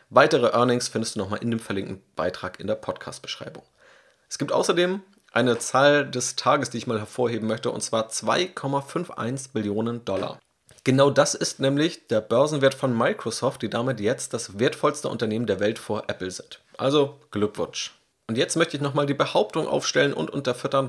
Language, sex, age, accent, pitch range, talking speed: German, male, 30-49, German, 110-140 Hz, 170 wpm